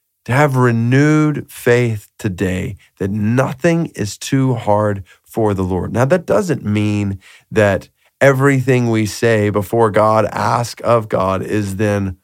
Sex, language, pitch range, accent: male, English, 100-150 Hz, American